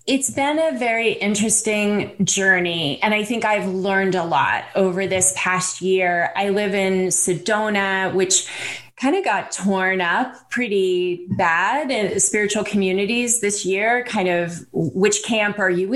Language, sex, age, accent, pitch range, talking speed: English, female, 20-39, American, 190-235 Hz, 150 wpm